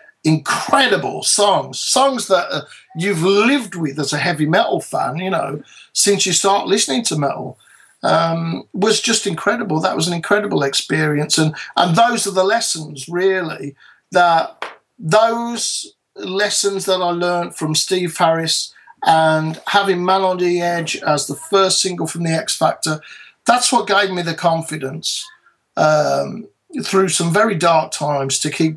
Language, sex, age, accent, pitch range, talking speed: English, male, 50-69, British, 150-195 Hz, 155 wpm